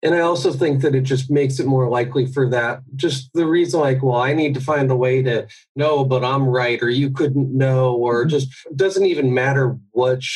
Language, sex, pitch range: English, male, 125-145 Hz